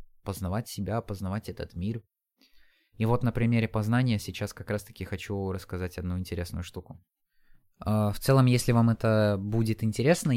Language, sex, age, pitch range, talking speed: Russian, male, 20-39, 95-115 Hz, 145 wpm